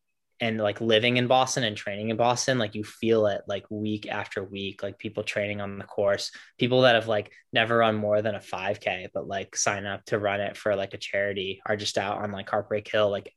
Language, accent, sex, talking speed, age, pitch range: English, American, male, 235 wpm, 10-29, 105-115 Hz